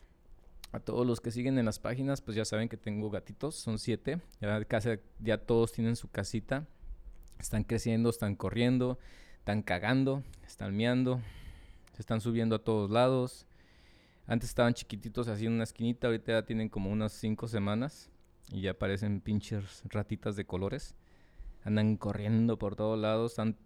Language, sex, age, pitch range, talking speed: Spanish, male, 20-39, 100-135 Hz, 160 wpm